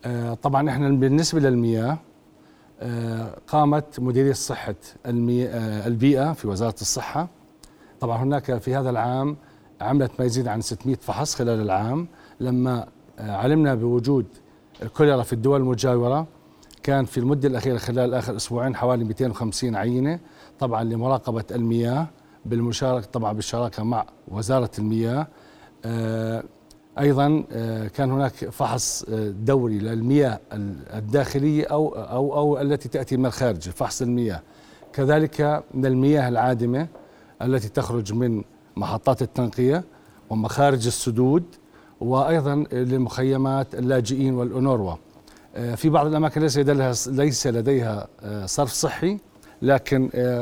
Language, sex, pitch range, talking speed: Arabic, male, 115-140 Hz, 110 wpm